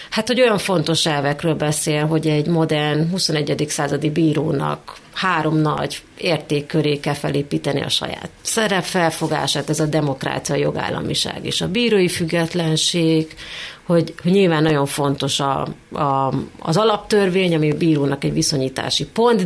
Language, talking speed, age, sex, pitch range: Hungarian, 135 wpm, 30-49, female, 155-185 Hz